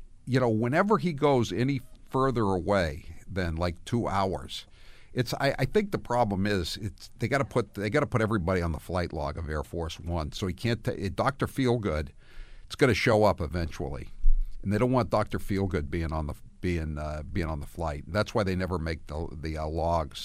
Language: English